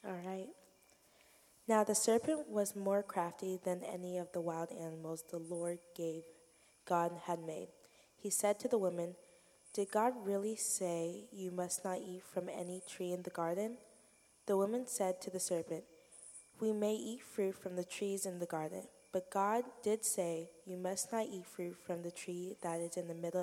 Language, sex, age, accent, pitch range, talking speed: English, female, 20-39, American, 170-195 Hz, 185 wpm